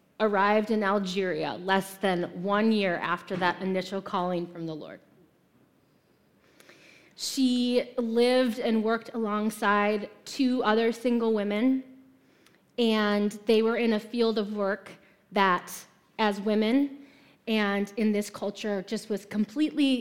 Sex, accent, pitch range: female, American, 200-255 Hz